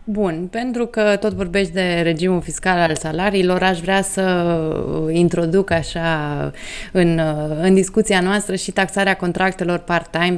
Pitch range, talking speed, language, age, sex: 155-185 Hz, 135 wpm, Romanian, 20-39, female